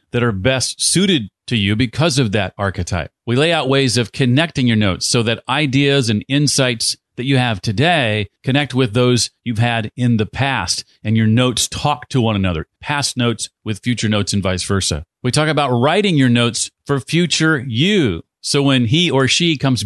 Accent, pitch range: American, 110-145 Hz